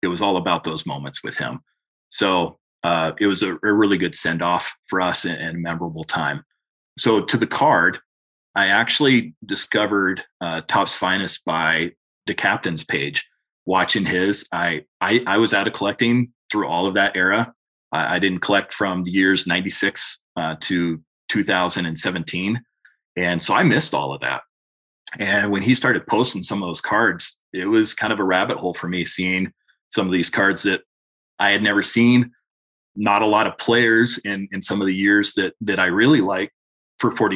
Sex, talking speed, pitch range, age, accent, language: male, 185 wpm, 90-100 Hz, 30-49, American, English